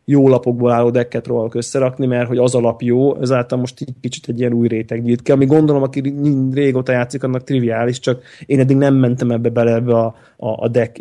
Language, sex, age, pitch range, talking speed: Hungarian, male, 20-39, 115-130 Hz, 235 wpm